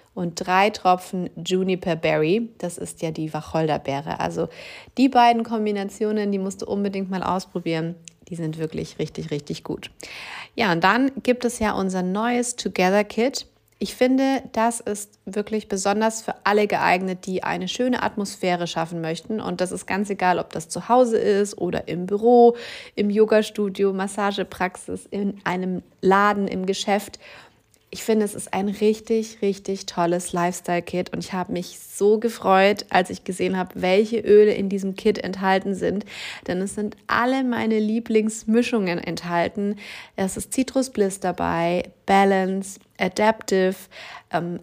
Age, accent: 30-49, German